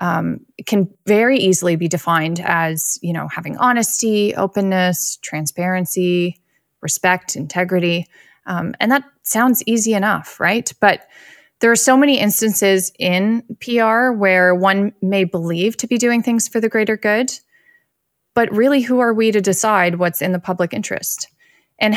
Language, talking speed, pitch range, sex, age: English, 150 wpm, 175-220 Hz, female, 20-39